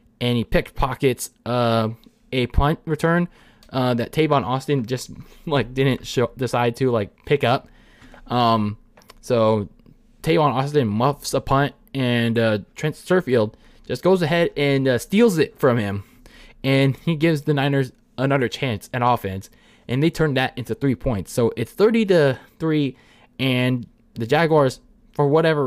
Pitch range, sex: 120-155 Hz, male